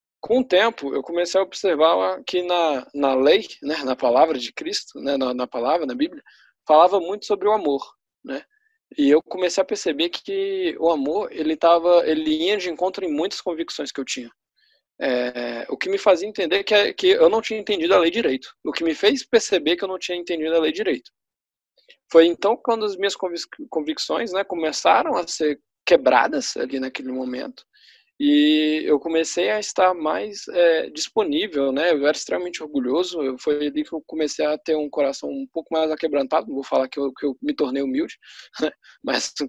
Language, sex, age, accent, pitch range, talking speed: Portuguese, male, 20-39, Brazilian, 140-195 Hz, 190 wpm